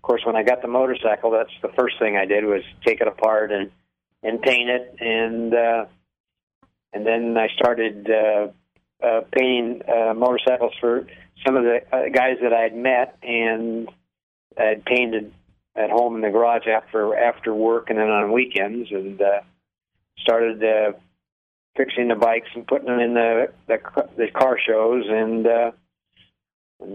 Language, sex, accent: English, male, American